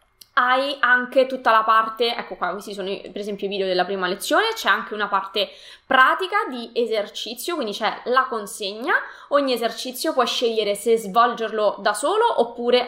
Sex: female